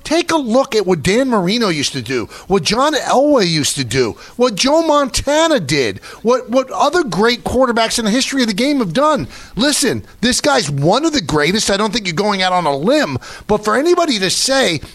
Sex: male